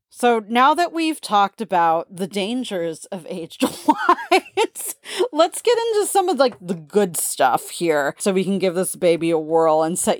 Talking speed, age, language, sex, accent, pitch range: 180 wpm, 30-49, English, female, American, 160-200 Hz